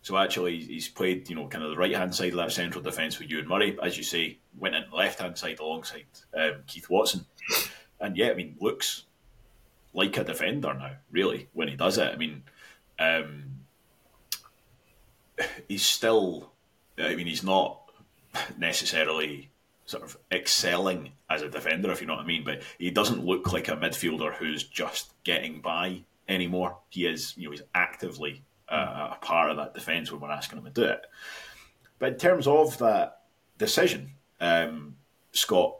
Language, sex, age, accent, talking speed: English, male, 30-49, British, 175 wpm